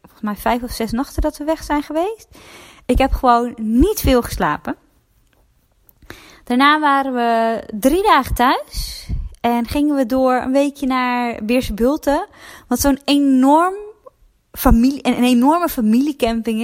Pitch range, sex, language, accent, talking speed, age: 215-275 Hz, female, Dutch, Dutch, 135 wpm, 20-39